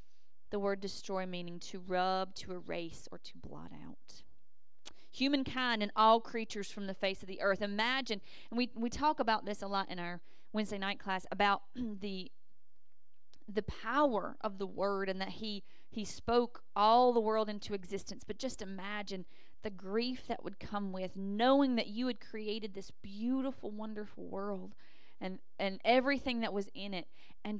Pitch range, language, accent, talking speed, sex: 190-240 Hz, English, American, 170 wpm, female